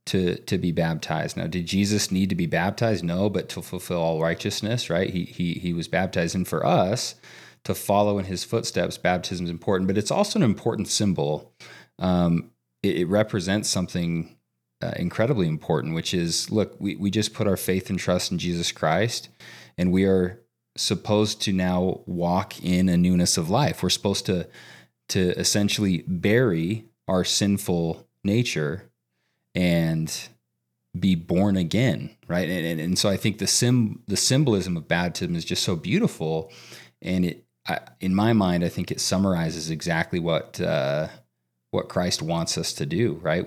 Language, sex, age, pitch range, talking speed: English, male, 30-49, 85-100 Hz, 170 wpm